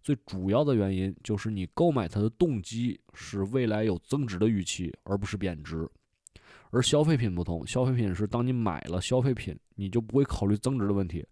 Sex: male